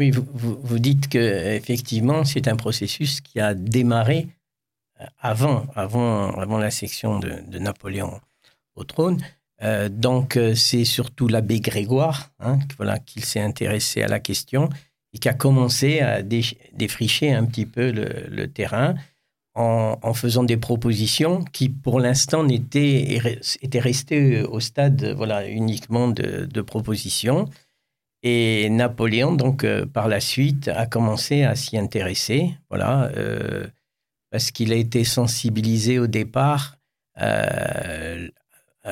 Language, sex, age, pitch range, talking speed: French, male, 50-69, 110-135 Hz, 135 wpm